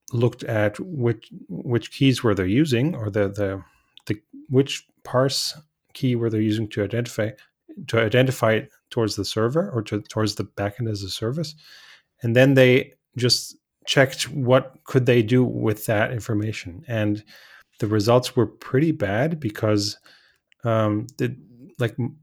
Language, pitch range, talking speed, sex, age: English, 110-130 Hz, 150 wpm, male, 30-49